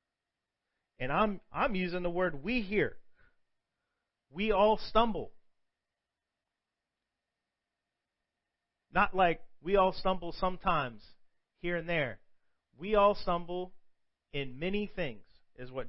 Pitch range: 145-200 Hz